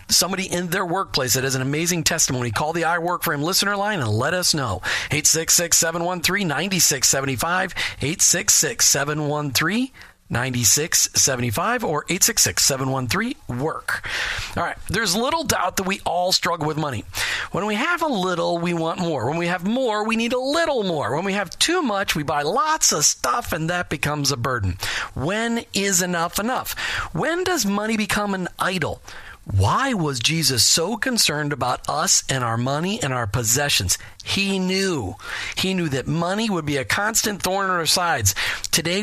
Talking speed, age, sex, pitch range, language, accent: 160 wpm, 40-59, male, 135-195 Hz, English, American